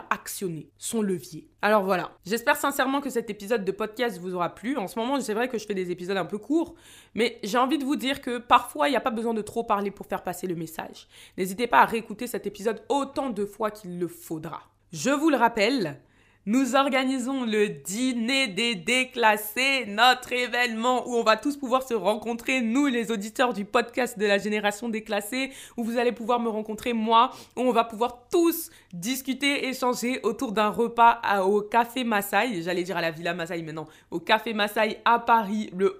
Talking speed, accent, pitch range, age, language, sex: 205 wpm, French, 205-245 Hz, 20-39, French, female